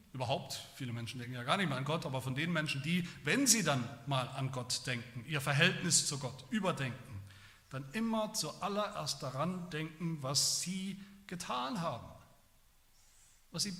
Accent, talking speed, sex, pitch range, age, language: German, 165 wpm, male, 125-175 Hz, 40-59, German